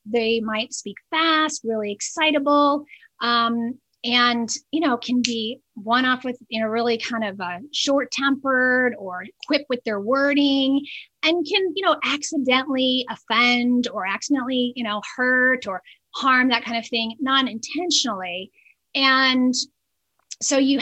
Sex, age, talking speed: female, 30-49, 140 wpm